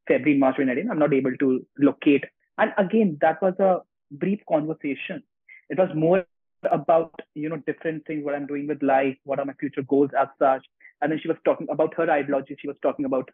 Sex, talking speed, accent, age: male, 210 wpm, Indian, 30-49